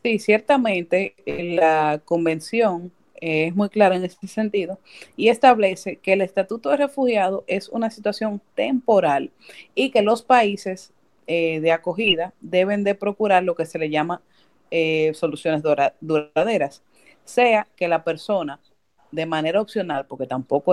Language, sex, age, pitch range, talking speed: Spanish, female, 30-49, 155-200 Hz, 150 wpm